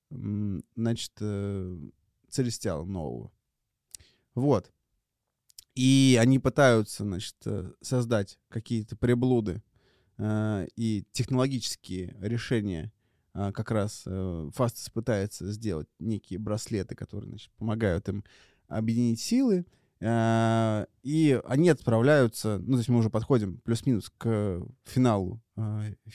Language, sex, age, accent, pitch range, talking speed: Russian, male, 30-49, native, 105-120 Hz, 95 wpm